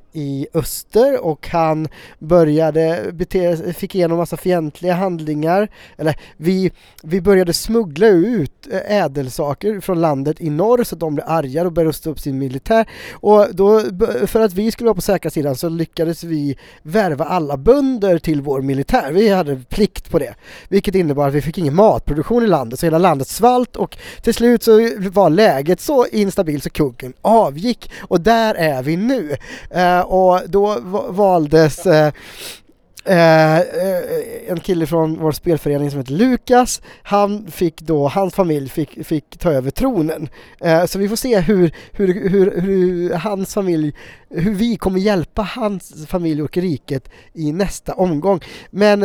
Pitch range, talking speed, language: 155-200 Hz, 165 wpm, English